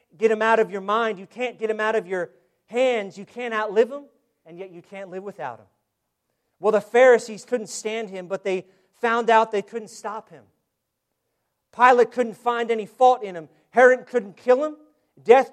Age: 40-59